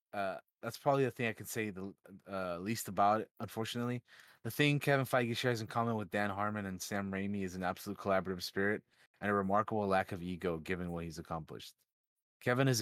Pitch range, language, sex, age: 100-115 Hz, English, male, 20-39